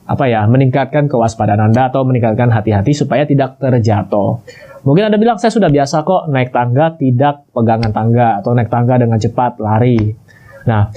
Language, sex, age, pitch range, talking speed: Indonesian, male, 20-39, 115-145 Hz, 165 wpm